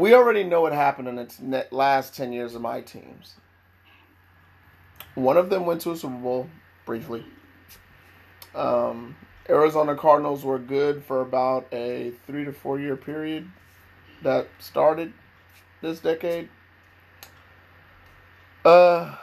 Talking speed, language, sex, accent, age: 125 wpm, English, male, American, 30-49